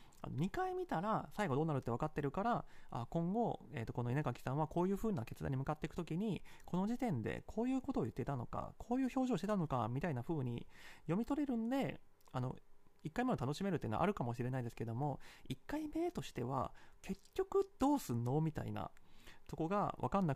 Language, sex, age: Japanese, male, 30-49